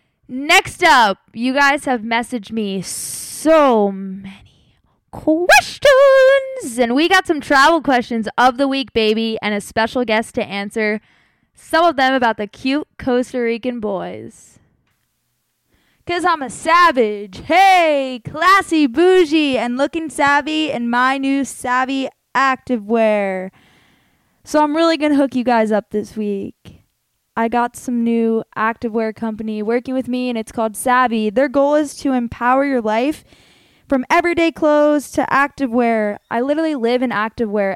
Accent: American